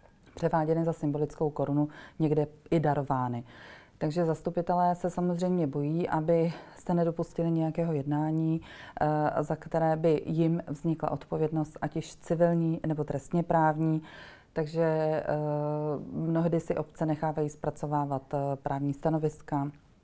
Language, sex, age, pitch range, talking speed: Czech, female, 30-49, 150-170 Hz, 110 wpm